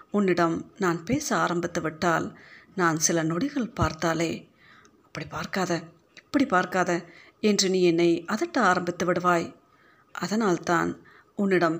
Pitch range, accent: 170-215 Hz, native